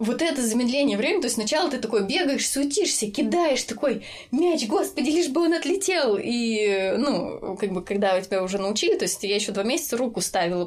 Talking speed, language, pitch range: 195 wpm, Russian, 210-260 Hz